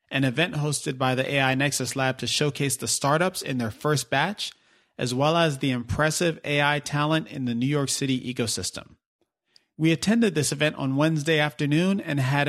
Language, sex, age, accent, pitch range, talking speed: English, male, 30-49, American, 140-165 Hz, 185 wpm